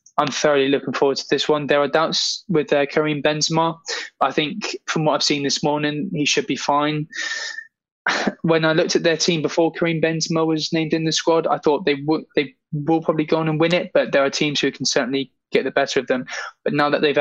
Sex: male